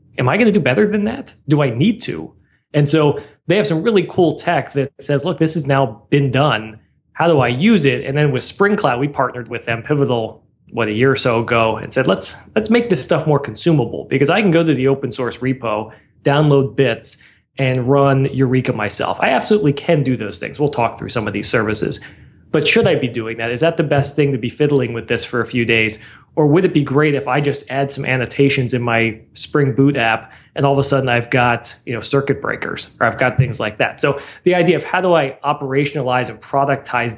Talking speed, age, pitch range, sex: 235 wpm, 20-39, 120-145 Hz, male